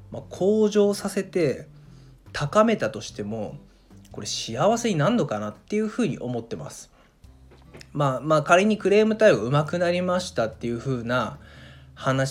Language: Japanese